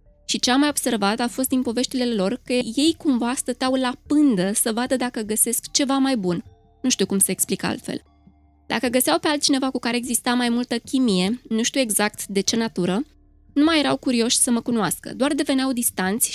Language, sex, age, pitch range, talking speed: Romanian, female, 20-39, 210-265 Hz, 200 wpm